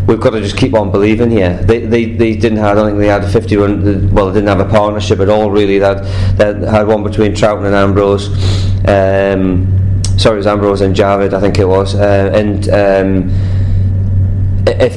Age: 20-39